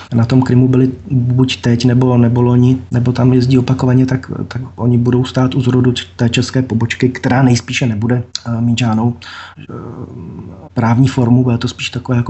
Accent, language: native, Czech